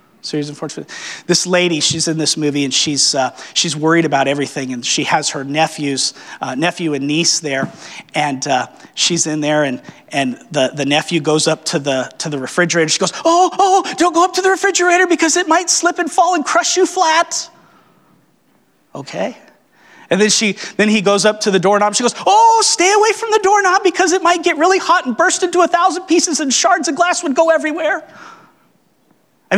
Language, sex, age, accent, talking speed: English, male, 30-49, American, 205 wpm